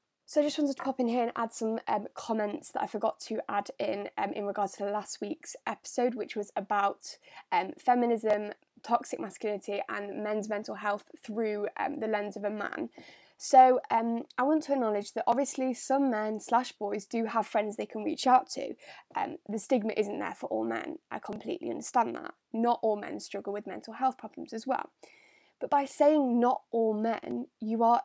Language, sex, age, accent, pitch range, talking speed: English, female, 10-29, British, 215-260 Hz, 205 wpm